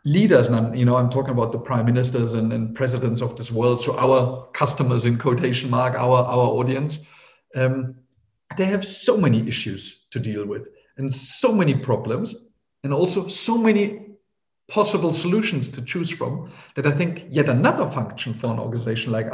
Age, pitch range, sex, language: 50-69, 125-170 Hz, male, English